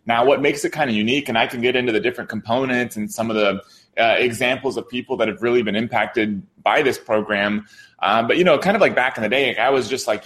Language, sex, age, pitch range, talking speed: English, male, 20-39, 115-140 Hz, 270 wpm